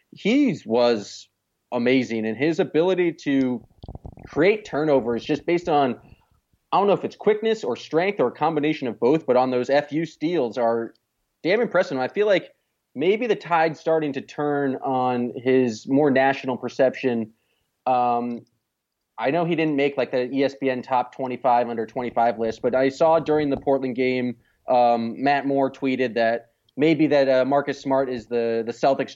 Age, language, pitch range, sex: 20-39, English, 120-140 Hz, male